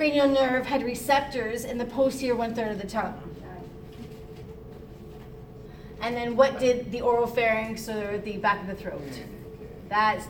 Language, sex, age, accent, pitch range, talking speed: English, female, 30-49, American, 220-265 Hz, 145 wpm